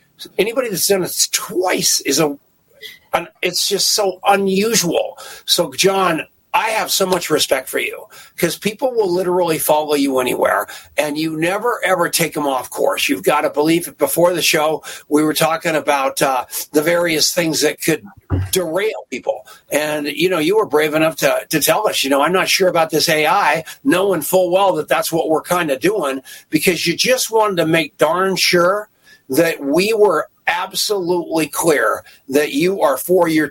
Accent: American